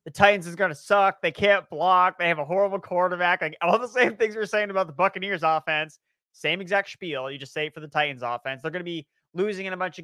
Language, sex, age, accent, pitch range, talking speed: English, male, 30-49, American, 150-195 Hz, 265 wpm